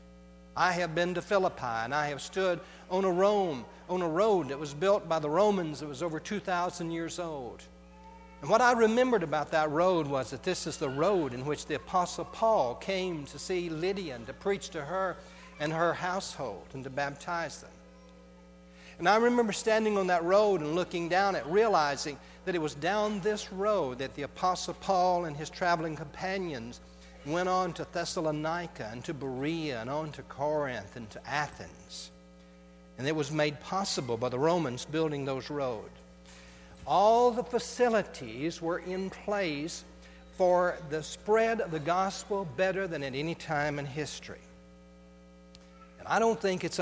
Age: 60-79